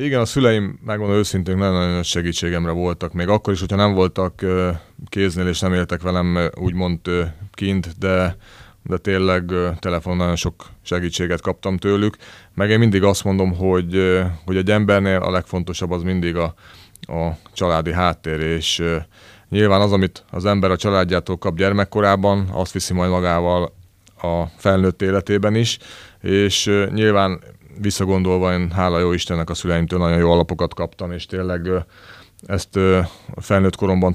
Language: Hungarian